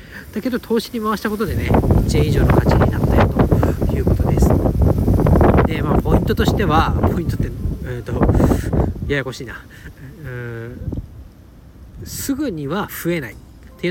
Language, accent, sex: Japanese, native, male